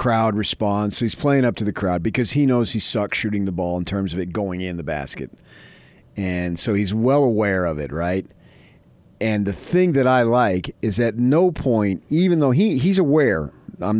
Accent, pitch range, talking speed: American, 105-145 Hz, 210 wpm